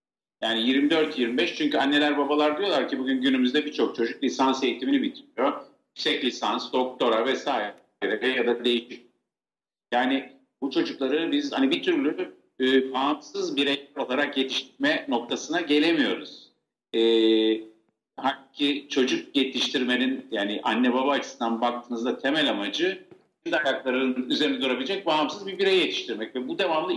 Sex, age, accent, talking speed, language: male, 50-69, native, 120 wpm, Turkish